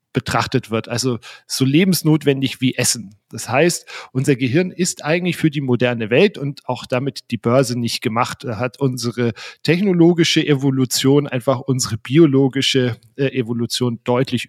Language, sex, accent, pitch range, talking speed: German, male, German, 120-155 Hz, 140 wpm